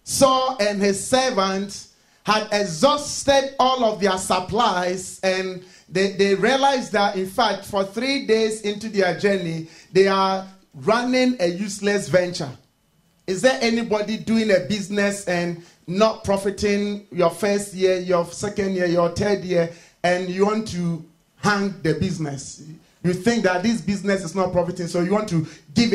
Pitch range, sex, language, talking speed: 190-250 Hz, male, English, 155 wpm